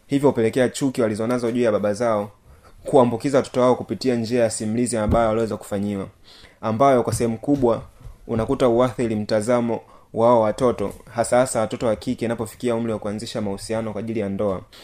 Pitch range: 105-125 Hz